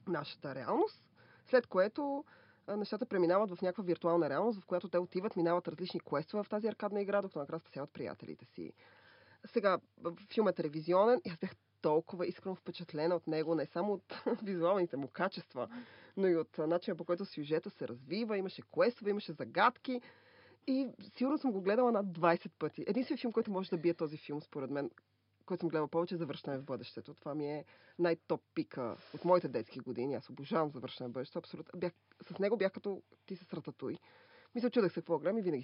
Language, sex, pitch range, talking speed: Bulgarian, female, 160-210 Hz, 185 wpm